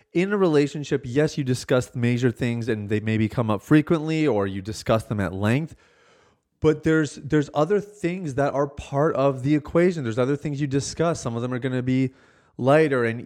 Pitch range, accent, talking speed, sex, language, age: 125-160 Hz, American, 205 wpm, male, English, 30-49